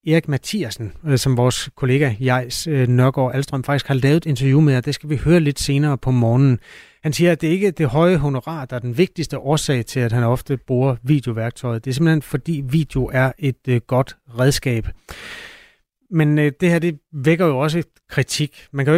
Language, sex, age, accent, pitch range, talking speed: Danish, male, 30-49, native, 125-155 Hz, 205 wpm